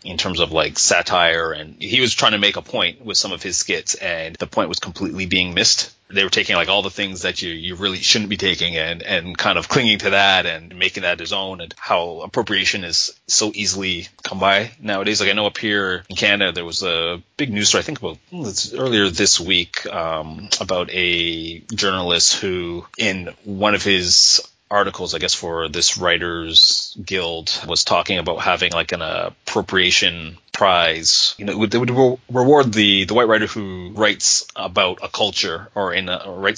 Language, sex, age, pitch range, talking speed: English, male, 30-49, 85-100 Hz, 200 wpm